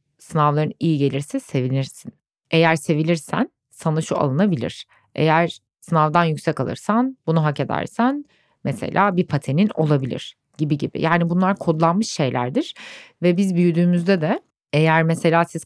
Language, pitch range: Turkish, 140-175 Hz